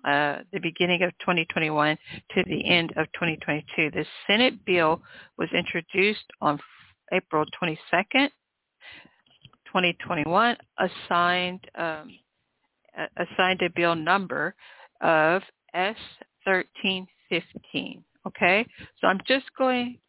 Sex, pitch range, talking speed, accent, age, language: female, 170-200 Hz, 105 wpm, American, 50-69, English